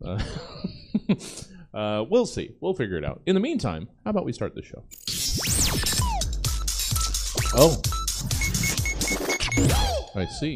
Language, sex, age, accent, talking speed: English, male, 30-49, American, 115 wpm